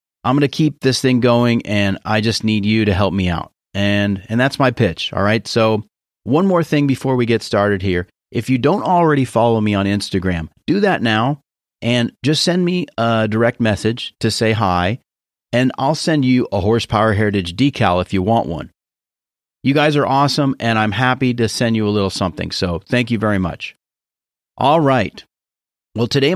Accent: American